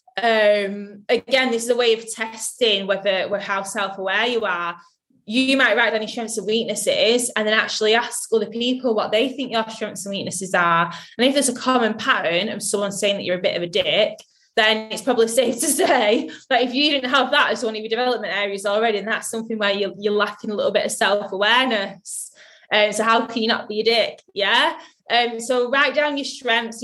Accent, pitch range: British, 205-245 Hz